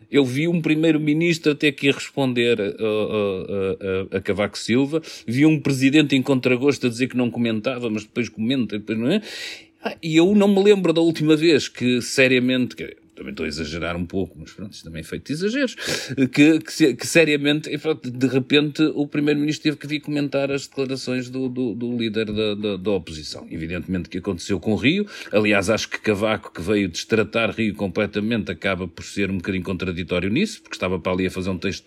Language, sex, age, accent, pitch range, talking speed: Portuguese, male, 40-59, Portuguese, 100-135 Hz, 205 wpm